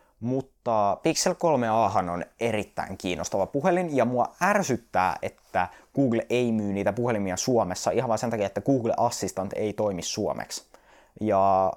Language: Finnish